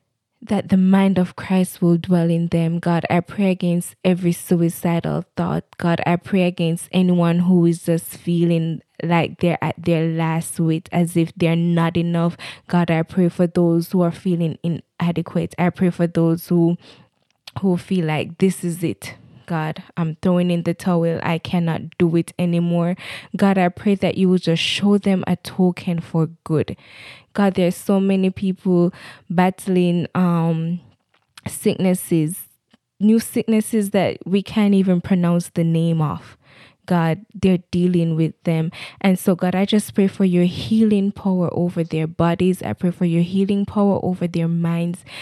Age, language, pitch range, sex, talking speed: 10-29, English, 170-185 Hz, female, 165 wpm